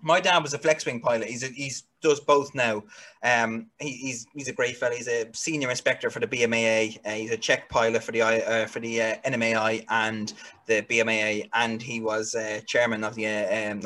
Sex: male